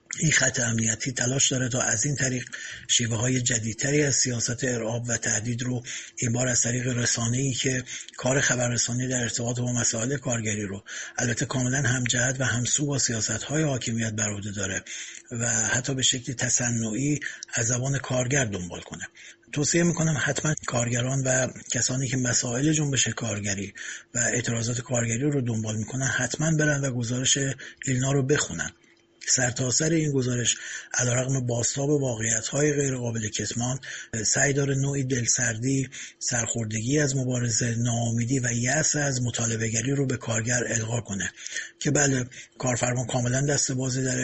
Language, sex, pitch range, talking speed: Persian, male, 115-135 Hz, 155 wpm